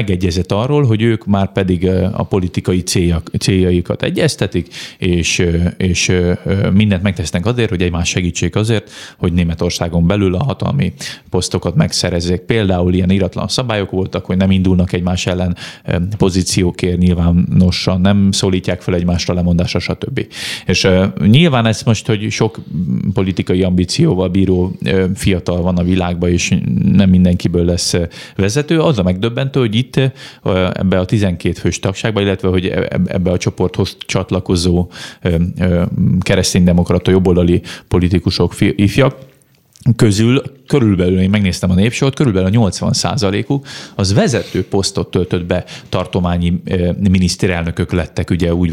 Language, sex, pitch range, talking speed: Hungarian, male, 90-105 Hz, 125 wpm